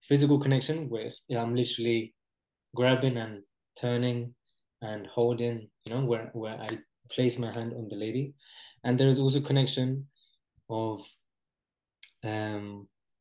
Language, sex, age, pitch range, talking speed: English, male, 20-39, 115-130 Hz, 125 wpm